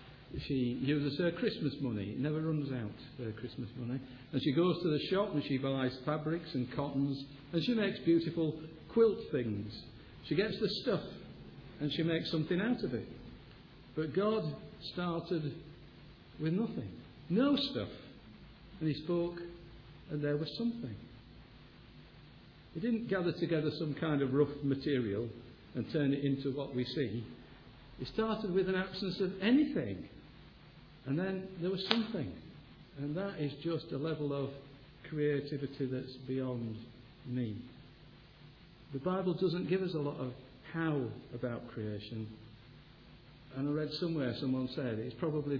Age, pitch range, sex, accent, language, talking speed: 50-69, 130-160 Hz, male, British, English, 150 wpm